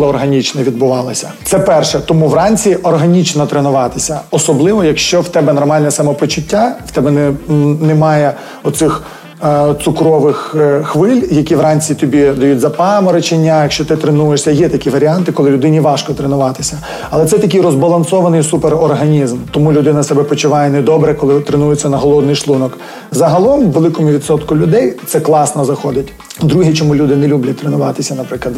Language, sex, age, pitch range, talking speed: Ukrainian, male, 30-49, 145-170 Hz, 135 wpm